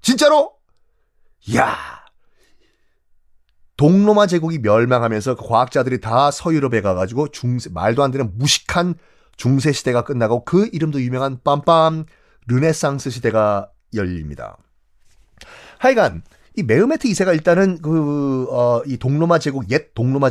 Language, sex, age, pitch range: Korean, male, 30-49, 130-210 Hz